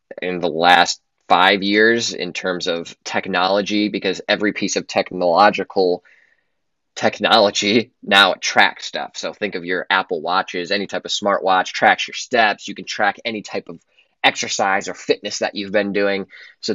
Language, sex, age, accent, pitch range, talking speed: English, male, 20-39, American, 95-120 Hz, 160 wpm